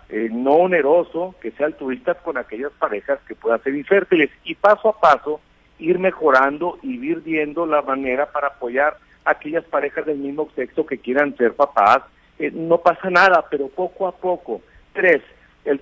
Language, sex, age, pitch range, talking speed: Spanish, male, 50-69, 145-185 Hz, 180 wpm